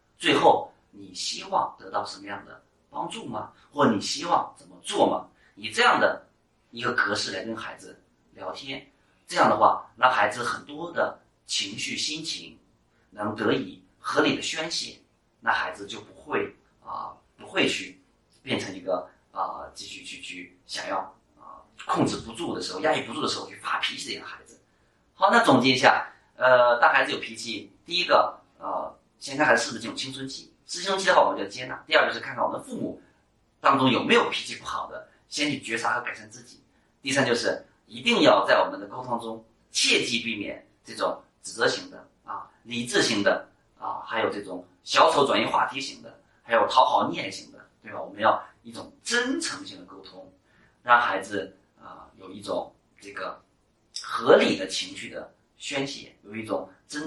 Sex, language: male, Chinese